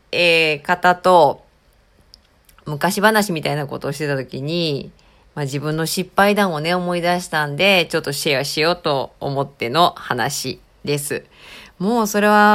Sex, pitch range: female, 145-185 Hz